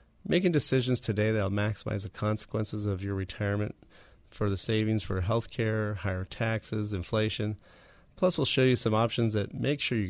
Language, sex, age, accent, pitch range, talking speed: English, male, 30-49, American, 105-125 Hz, 170 wpm